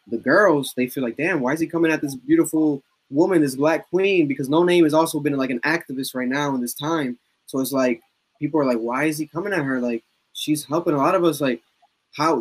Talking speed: 250 wpm